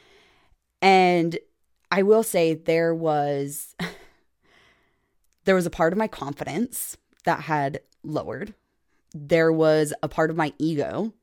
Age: 20-39